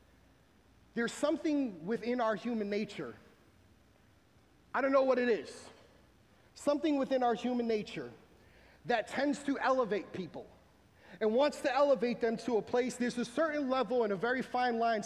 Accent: American